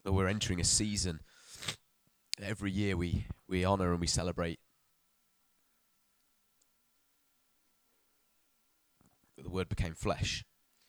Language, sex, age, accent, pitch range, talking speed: English, male, 20-39, British, 85-100 Hz, 105 wpm